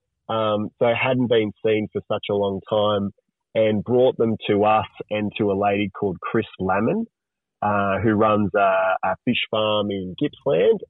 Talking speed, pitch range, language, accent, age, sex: 170 wpm, 100-125 Hz, English, Australian, 20-39, male